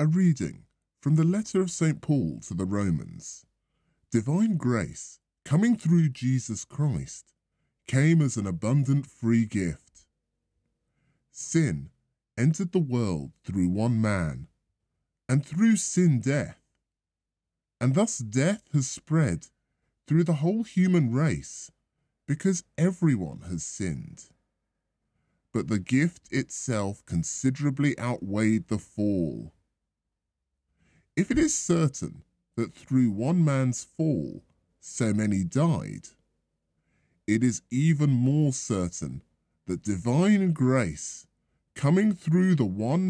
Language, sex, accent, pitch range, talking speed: English, female, British, 95-155 Hz, 110 wpm